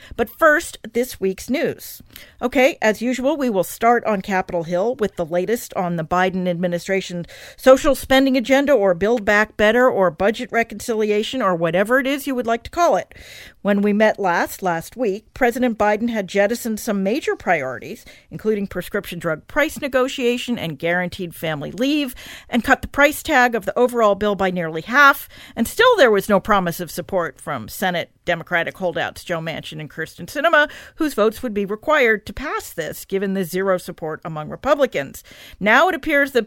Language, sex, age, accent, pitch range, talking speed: English, female, 50-69, American, 190-260 Hz, 180 wpm